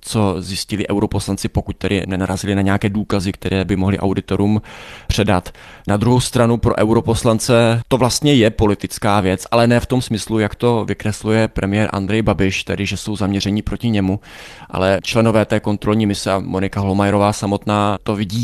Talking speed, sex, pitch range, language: 170 wpm, male, 95-110 Hz, Czech